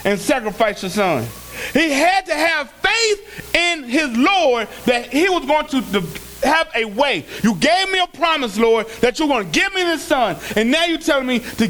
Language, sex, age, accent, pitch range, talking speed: English, male, 40-59, American, 270-365 Hz, 205 wpm